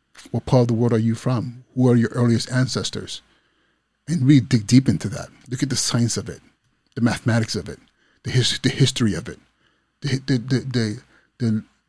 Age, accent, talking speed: 30-49, American, 205 wpm